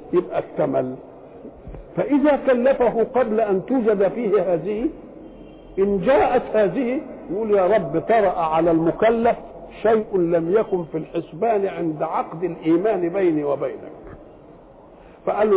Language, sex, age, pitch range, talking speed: Dutch, male, 50-69, 175-235 Hz, 110 wpm